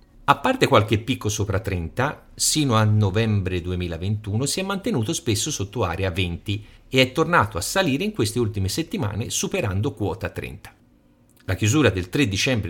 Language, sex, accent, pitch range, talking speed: Italian, male, native, 95-135 Hz, 160 wpm